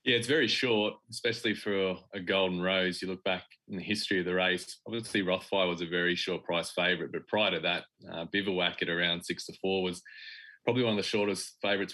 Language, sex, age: English, male, 20-39